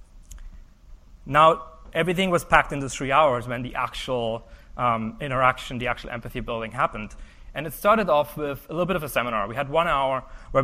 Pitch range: 115-145 Hz